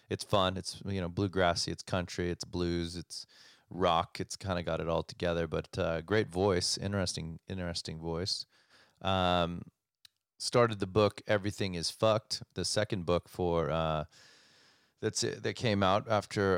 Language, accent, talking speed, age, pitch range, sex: English, American, 160 wpm, 30-49, 85-105 Hz, male